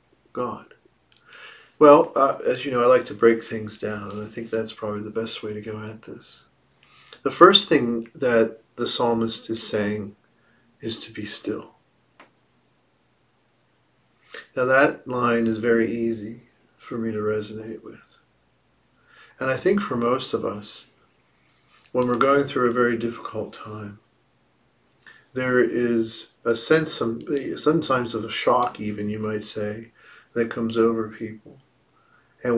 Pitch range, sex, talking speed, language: 110-125 Hz, male, 145 wpm, English